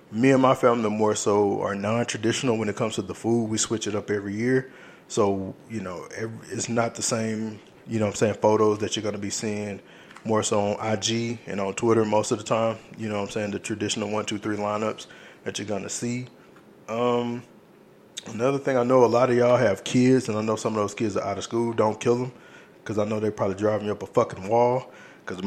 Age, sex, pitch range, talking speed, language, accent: 20-39, male, 105-115 Hz, 245 wpm, English, American